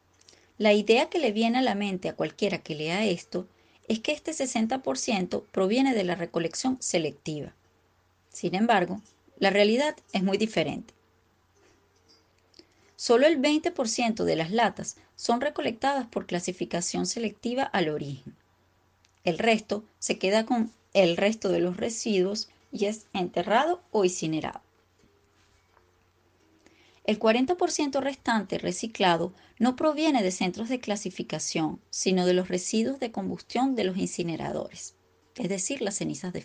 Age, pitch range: 30-49, 175-235 Hz